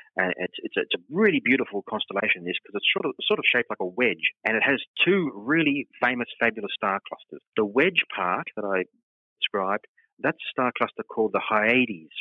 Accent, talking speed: Australian, 205 wpm